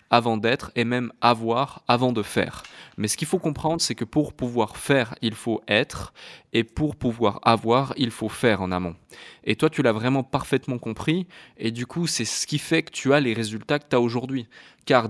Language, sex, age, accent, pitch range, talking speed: French, male, 20-39, French, 110-145 Hz, 215 wpm